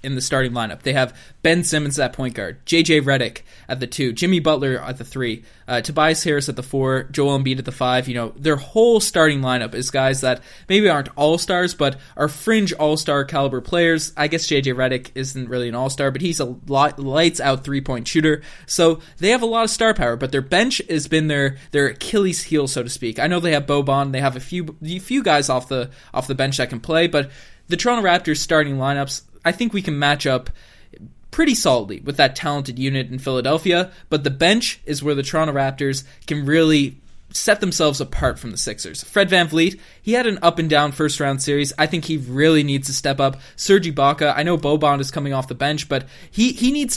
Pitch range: 135-165 Hz